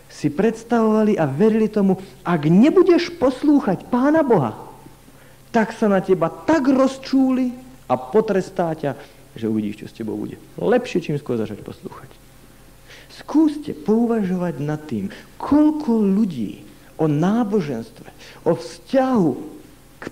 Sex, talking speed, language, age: male, 120 wpm, Slovak, 50-69